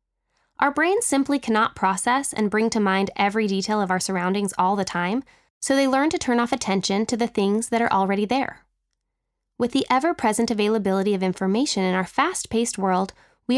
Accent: American